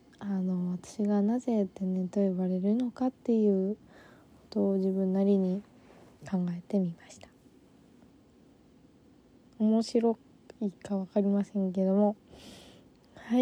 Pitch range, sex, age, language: 195-230 Hz, female, 20-39, Japanese